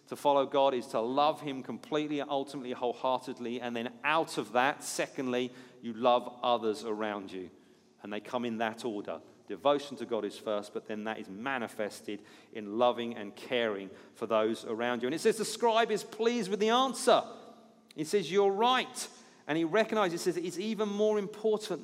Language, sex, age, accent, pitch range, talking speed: English, male, 40-59, British, 125-170 Hz, 180 wpm